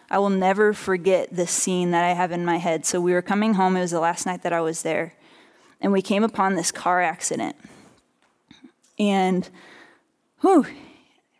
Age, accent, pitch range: 20-39, American, 180-200 Hz